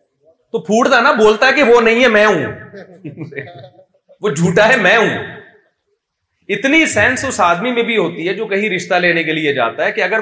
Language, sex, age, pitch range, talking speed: Urdu, male, 30-49, 190-250 Hz, 200 wpm